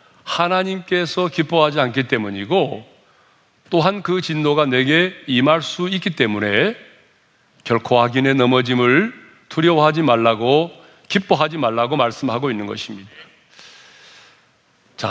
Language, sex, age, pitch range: Korean, male, 40-59, 120-175 Hz